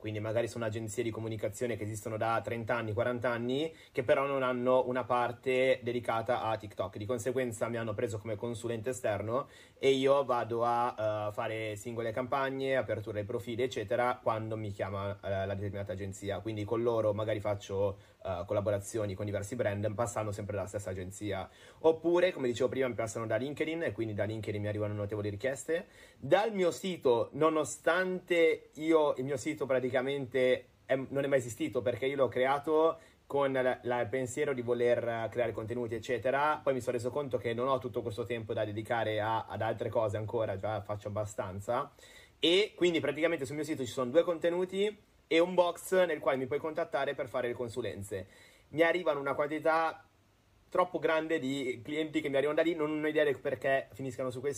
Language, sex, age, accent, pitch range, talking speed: Italian, male, 20-39, native, 110-140 Hz, 185 wpm